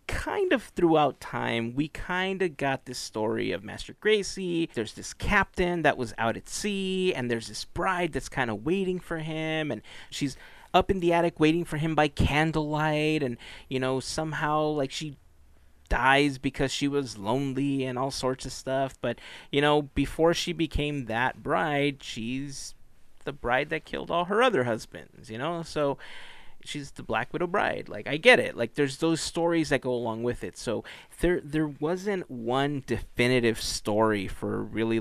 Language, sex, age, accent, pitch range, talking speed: English, male, 30-49, American, 115-155 Hz, 180 wpm